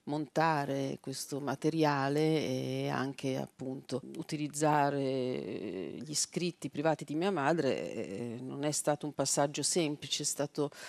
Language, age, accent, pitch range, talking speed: Italian, 40-59, native, 140-160 Hz, 115 wpm